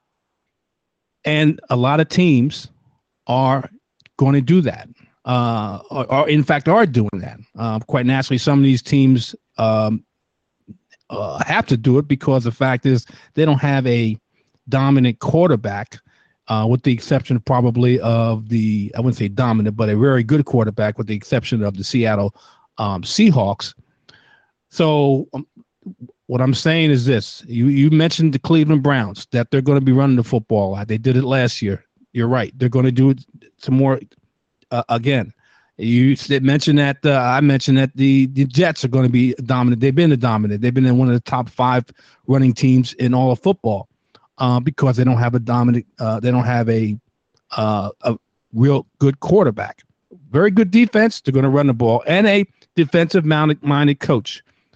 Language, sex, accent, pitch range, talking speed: English, male, American, 120-140 Hz, 180 wpm